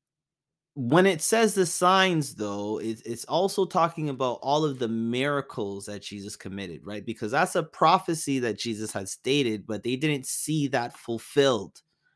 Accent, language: American, English